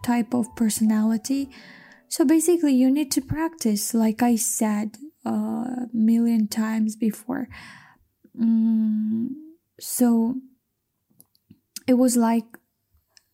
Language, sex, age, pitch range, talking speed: English, female, 10-29, 220-250 Hz, 95 wpm